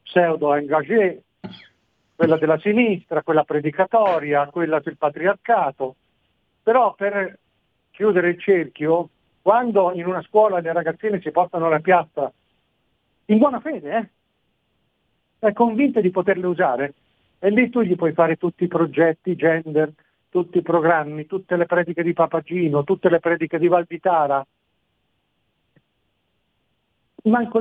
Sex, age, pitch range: male, 50-69, 155-195 Hz